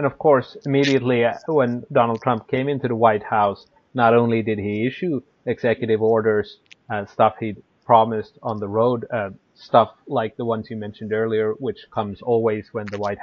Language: English